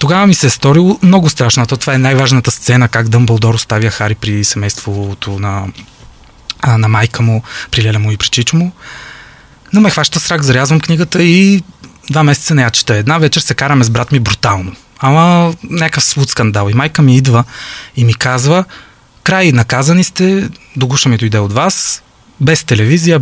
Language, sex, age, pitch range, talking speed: Bulgarian, male, 20-39, 120-165 Hz, 180 wpm